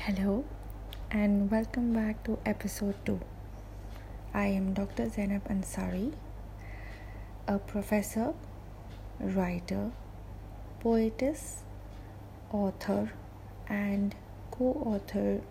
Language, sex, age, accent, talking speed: English, female, 30-49, Indian, 75 wpm